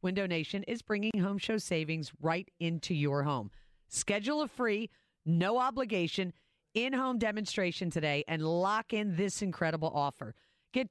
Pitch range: 155-210 Hz